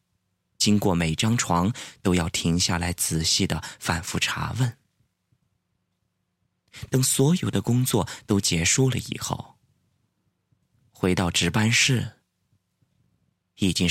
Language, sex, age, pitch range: Chinese, male, 20-39, 90-130 Hz